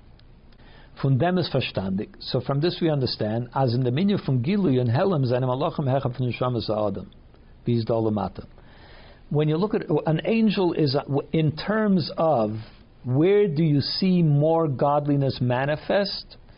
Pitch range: 125-160 Hz